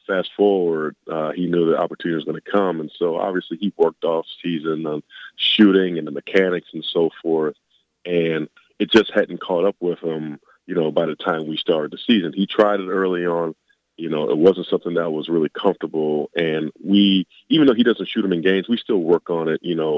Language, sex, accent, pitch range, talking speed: English, male, American, 80-95 Hz, 220 wpm